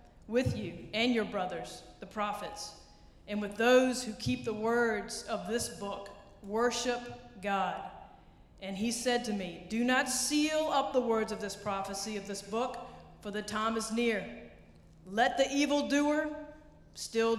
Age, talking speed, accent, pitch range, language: 40-59, 155 wpm, American, 200-235 Hz, English